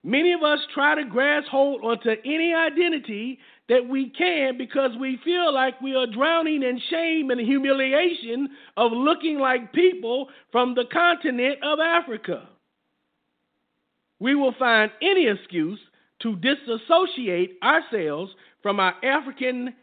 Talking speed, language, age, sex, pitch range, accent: 135 wpm, English, 50-69, male, 220-285 Hz, American